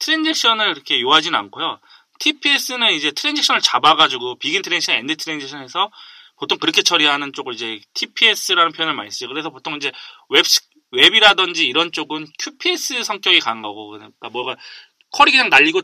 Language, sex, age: Korean, male, 20-39